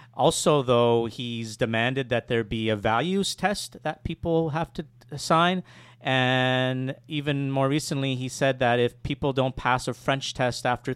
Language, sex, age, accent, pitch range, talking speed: English, male, 40-59, American, 115-135 Hz, 165 wpm